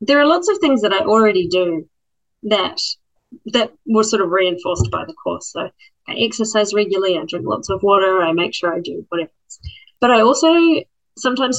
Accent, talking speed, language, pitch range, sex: Australian, 190 wpm, English, 180-230 Hz, female